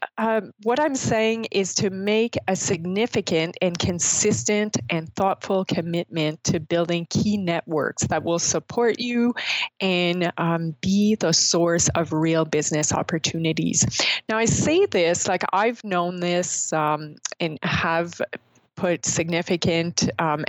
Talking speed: 130 wpm